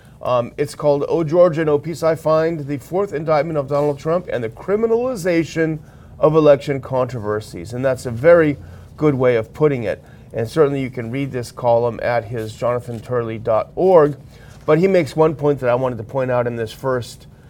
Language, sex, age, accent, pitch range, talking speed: English, male, 40-59, American, 125-160 Hz, 190 wpm